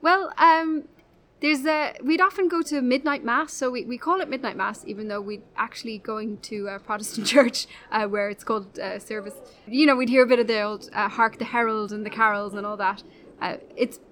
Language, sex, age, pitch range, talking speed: English, female, 10-29, 215-260 Hz, 225 wpm